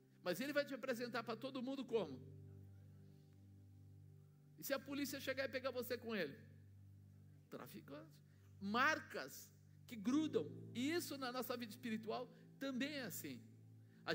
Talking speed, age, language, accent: 140 wpm, 50-69, Portuguese, Brazilian